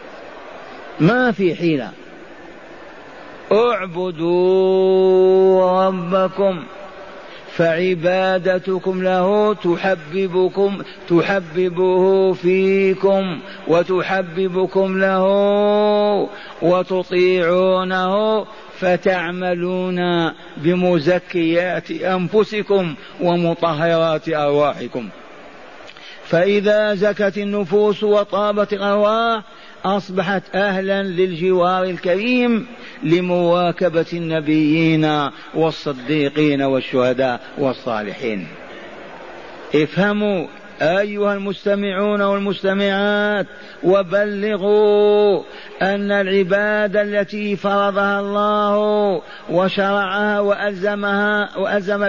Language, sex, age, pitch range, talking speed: Arabic, male, 50-69, 175-205 Hz, 50 wpm